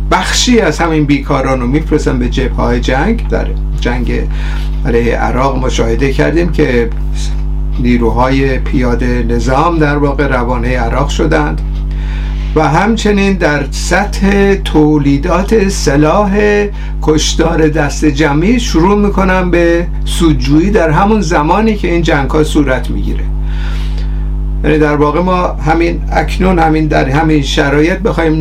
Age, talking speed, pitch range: 50-69, 120 wpm, 130-165 Hz